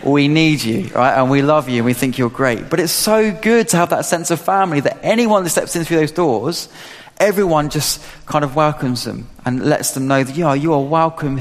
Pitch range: 130-165 Hz